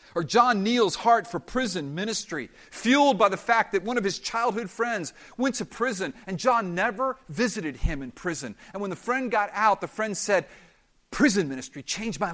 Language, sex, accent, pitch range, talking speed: English, male, American, 175-235 Hz, 195 wpm